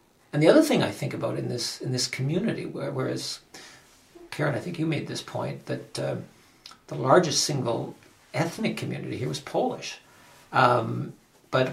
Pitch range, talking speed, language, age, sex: 125-155 Hz, 170 wpm, English, 60-79, male